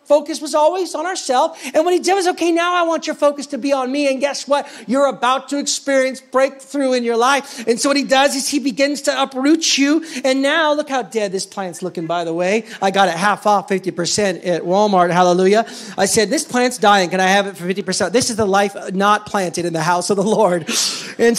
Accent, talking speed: American, 240 wpm